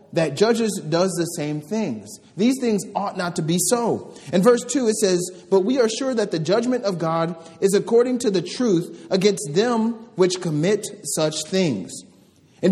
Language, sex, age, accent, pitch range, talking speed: English, male, 30-49, American, 180-215 Hz, 185 wpm